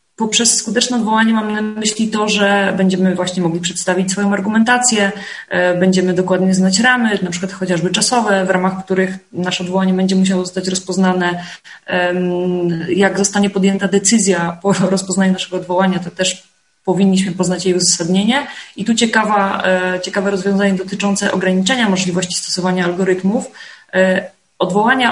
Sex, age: female, 20-39